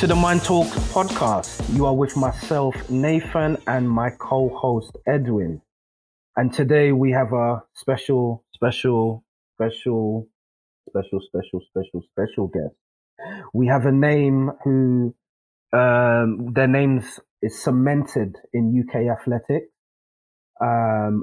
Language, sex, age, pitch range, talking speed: English, male, 30-49, 110-130 Hz, 115 wpm